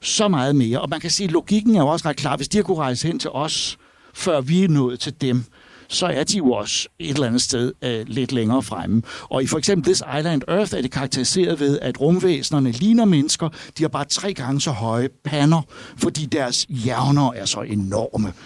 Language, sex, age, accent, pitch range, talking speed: Danish, male, 60-79, native, 125-175 Hz, 225 wpm